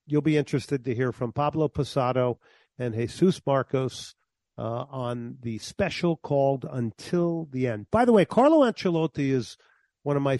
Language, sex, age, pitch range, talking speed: English, male, 50-69, 120-160 Hz, 160 wpm